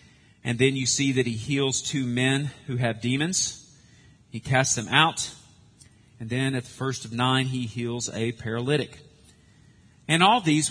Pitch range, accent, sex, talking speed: 125-150 Hz, American, male, 170 wpm